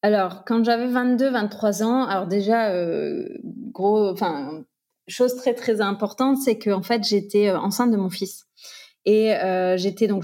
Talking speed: 170 wpm